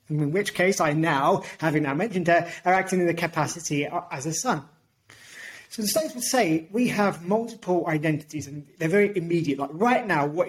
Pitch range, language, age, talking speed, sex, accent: 150-185 Hz, English, 30-49, 195 wpm, male, British